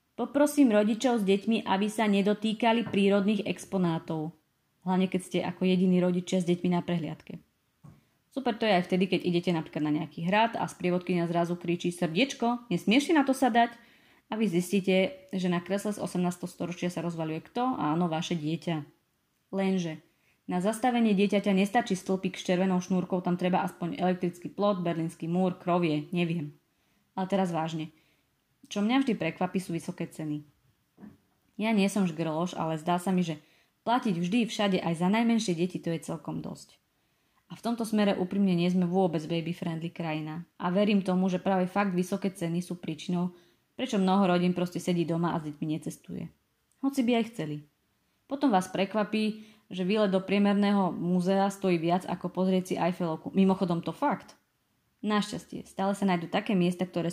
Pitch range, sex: 170-205 Hz, female